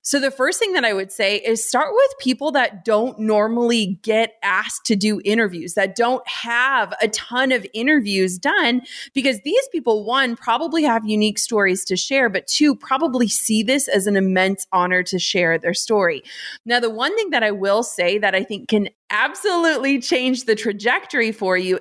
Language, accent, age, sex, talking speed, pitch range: English, American, 20-39, female, 190 wpm, 200-255 Hz